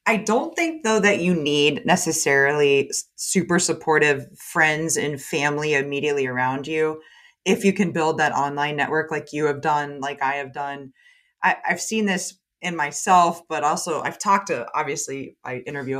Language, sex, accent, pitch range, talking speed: English, female, American, 145-175 Hz, 165 wpm